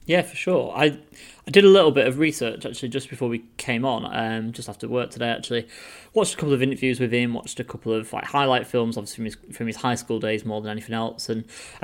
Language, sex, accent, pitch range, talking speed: English, male, British, 110-130 Hz, 260 wpm